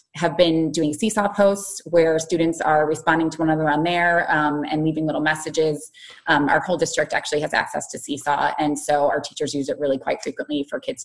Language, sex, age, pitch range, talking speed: English, female, 20-39, 155-190 Hz, 210 wpm